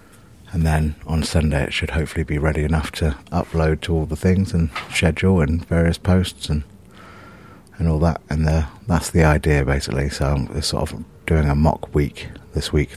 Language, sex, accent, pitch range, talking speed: English, male, British, 70-90 Hz, 195 wpm